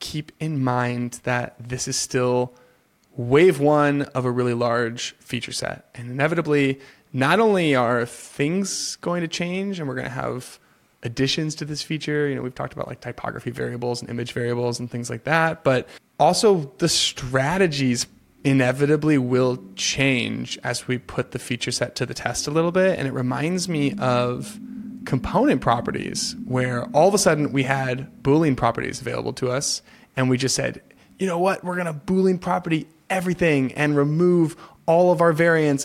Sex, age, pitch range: male, 20-39, 125-160 Hz